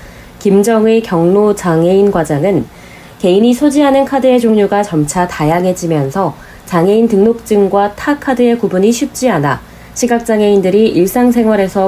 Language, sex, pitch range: Korean, female, 155-220 Hz